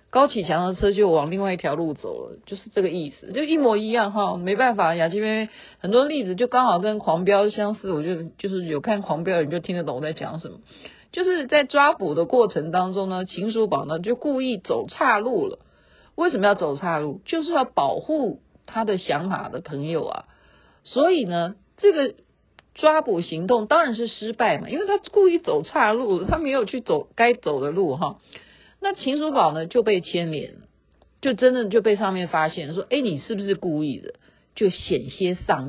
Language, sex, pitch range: Chinese, female, 160-250 Hz